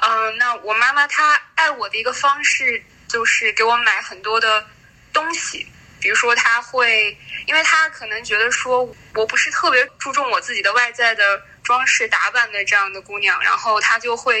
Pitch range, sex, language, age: 215-275 Hz, female, Chinese, 10-29